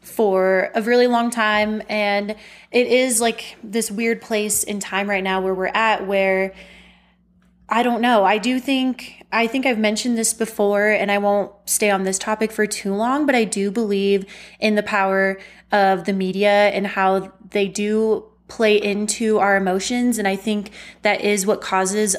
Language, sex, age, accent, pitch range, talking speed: English, female, 20-39, American, 195-220 Hz, 180 wpm